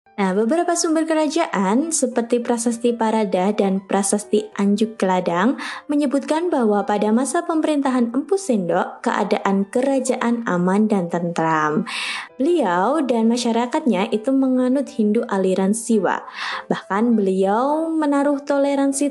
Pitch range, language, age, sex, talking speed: 195-260 Hz, Indonesian, 20-39, female, 105 wpm